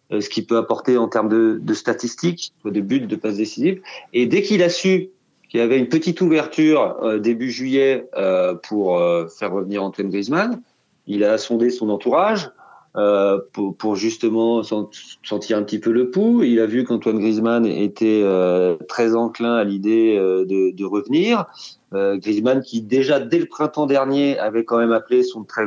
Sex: male